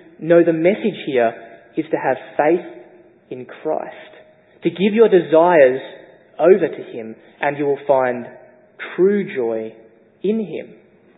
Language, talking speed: English, 135 wpm